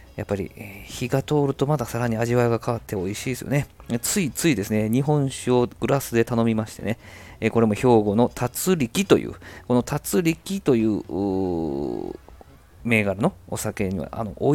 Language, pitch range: Japanese, 100-130 Hz